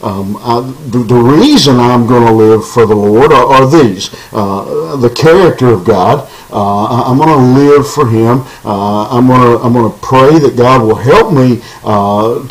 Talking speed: 195 wpm